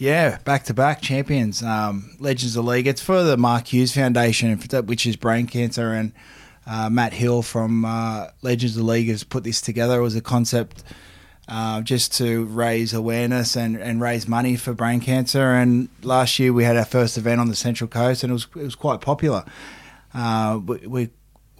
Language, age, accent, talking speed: English, 20-39, Australian, 190 wpm